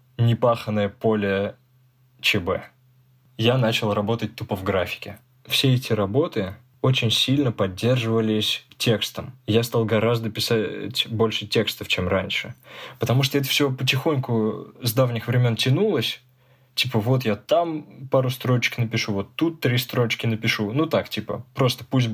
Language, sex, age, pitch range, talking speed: Russian, male, 20-39, 110-130 Hz, 135 wpm